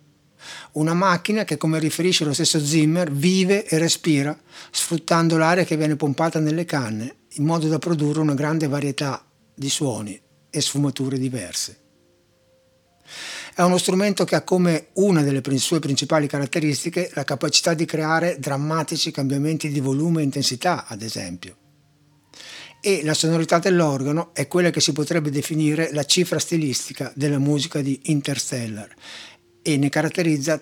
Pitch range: 135-165 Hz